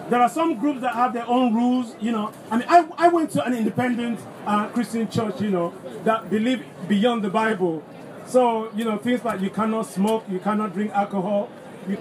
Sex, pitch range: male, 200-245 Hz